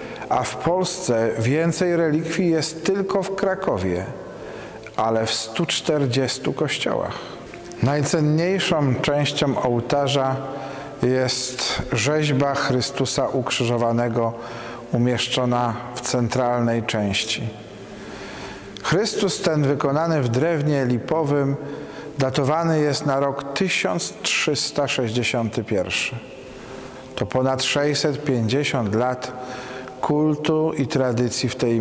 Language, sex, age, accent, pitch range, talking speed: Polish, male, 40-59, native, 120-145 Hz, 85 wpm